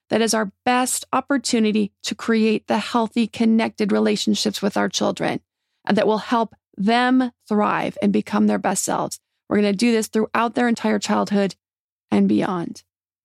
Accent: American